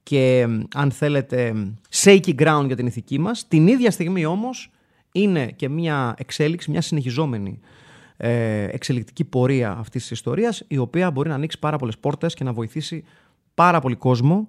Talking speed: 160 wpm